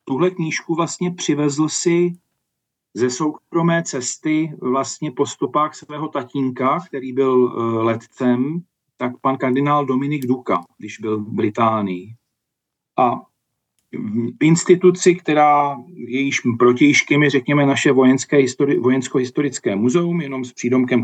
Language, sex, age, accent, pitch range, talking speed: Czech, male, 40-59, native, 115-145 Hz, 115 wpm